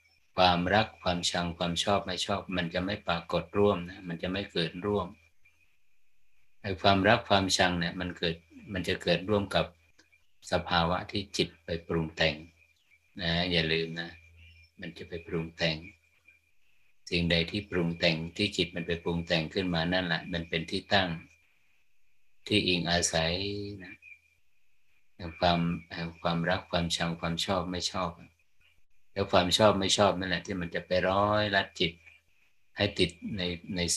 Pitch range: 85-100 Hz